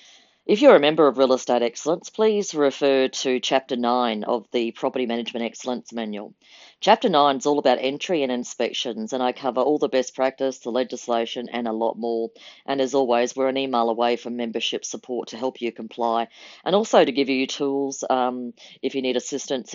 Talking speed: 200 wpm